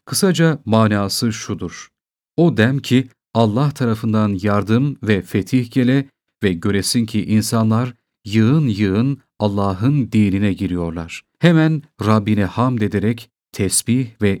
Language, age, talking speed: Turkish, 40-59, 110 wpm